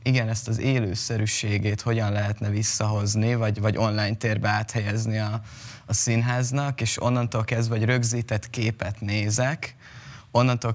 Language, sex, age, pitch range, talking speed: Hungarian, male, 20-39, 110-125 Hz, 130 wpm